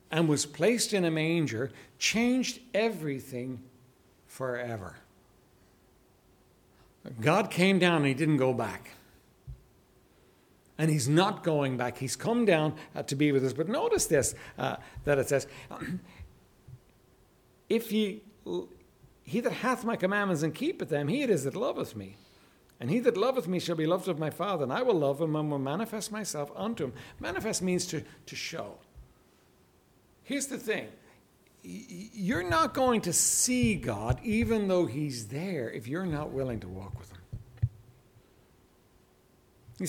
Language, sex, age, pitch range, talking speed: English, male, 60-79, 115-185 Hz, 150 wpm